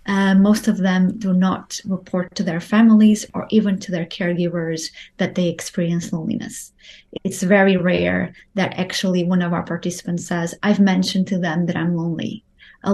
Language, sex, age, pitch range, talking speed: English, female, 30-49, 185-215 Hz, 170 wpm